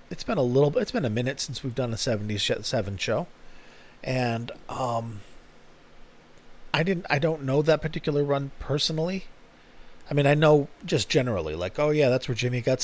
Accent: American